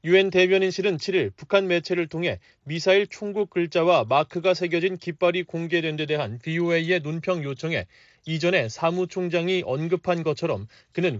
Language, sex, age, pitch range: Korean, male, 30-49, 155-180 Hz